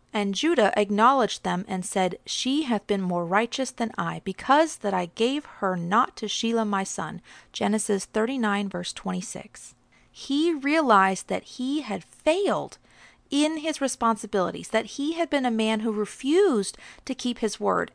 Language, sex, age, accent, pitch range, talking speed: English, female, 40-59, American, 205-270 Hz, 160 wpm